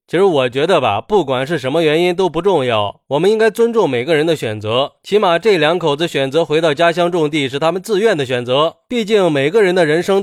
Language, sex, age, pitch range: Chinese, male, 20-39, 145-215 Hz